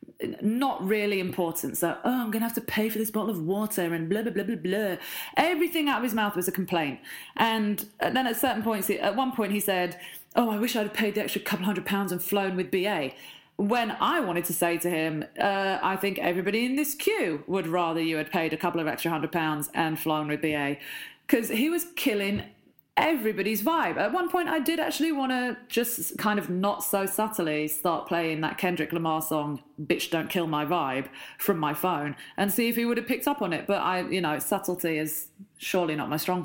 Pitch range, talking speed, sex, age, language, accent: 180-275 Hz, 225 wpm, female, 30-49, English, British